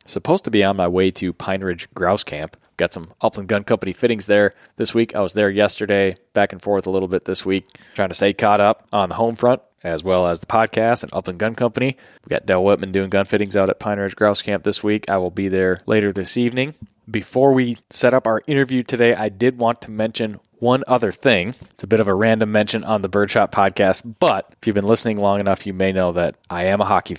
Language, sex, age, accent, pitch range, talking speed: English, male, 20-39, American, 95-110 Hz, 250 wpm